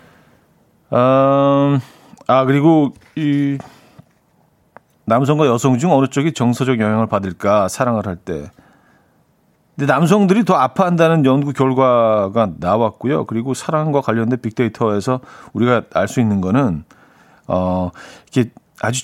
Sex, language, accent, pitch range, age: male, Korean, native, 115-160 Hz, 40-59